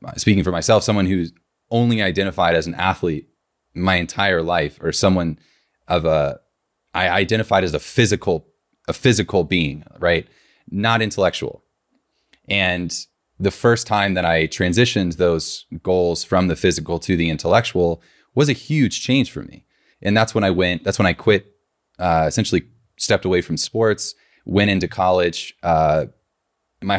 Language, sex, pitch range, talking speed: English, male, 85-105 Hz, 155 wpm